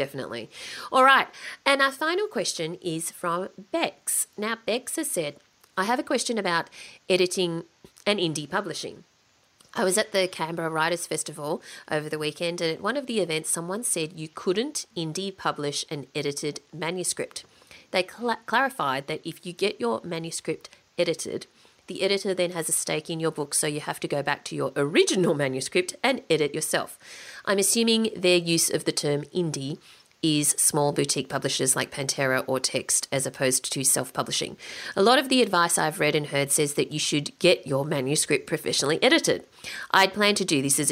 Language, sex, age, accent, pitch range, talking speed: English, female, 30-49, Australian, 150-190 Hz, 180 wpm